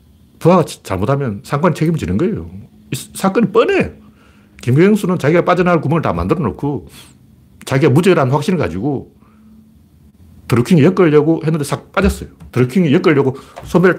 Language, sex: Korean, male